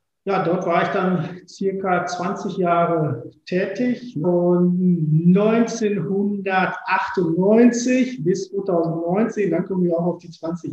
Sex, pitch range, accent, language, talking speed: male, 155-195 Hz, German, German, 110 wpm